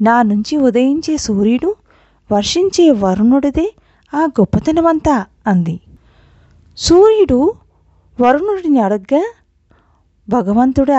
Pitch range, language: 195-280 Hz, Telugu